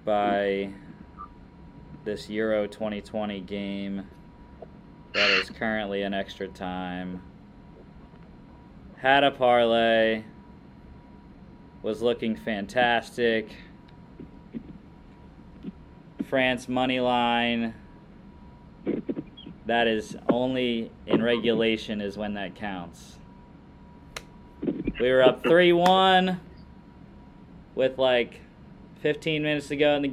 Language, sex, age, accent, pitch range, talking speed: English, male, 20-39, American, 105-140 Hz, 80 wpm